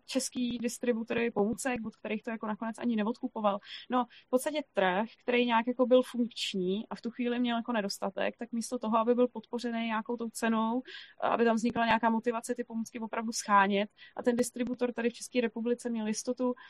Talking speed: 190 wpm